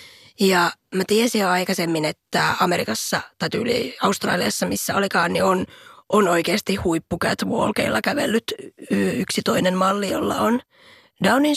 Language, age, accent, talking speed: Finnish, 20-39, native, 135 wpm